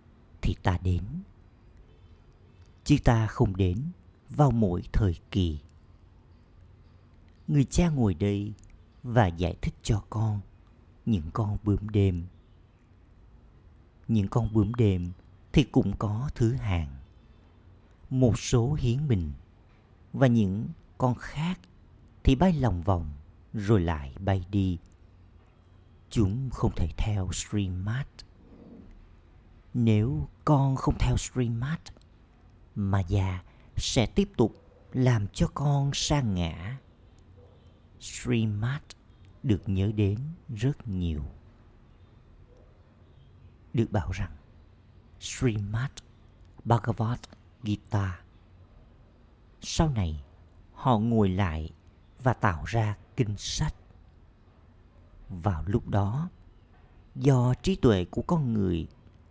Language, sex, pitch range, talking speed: Vietnamese, male, 90-115 Hz, 100 wpm